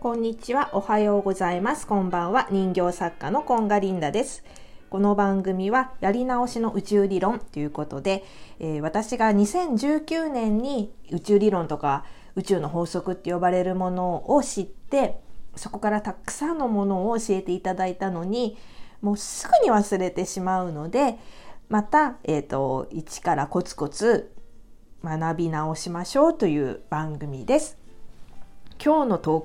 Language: Japanese